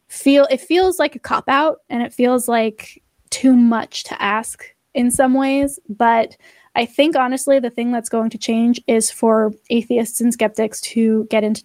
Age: 10-29